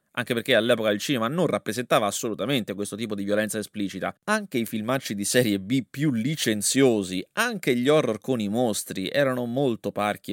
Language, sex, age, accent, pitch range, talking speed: Italian, male, 30-49, native, 105-155 Hz, 175 wpm